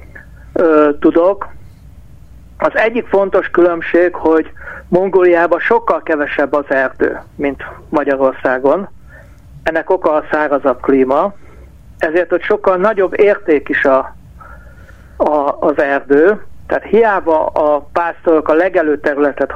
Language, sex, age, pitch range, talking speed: Hungarian, male, 60-79, 150-180 Hz, 100 wpm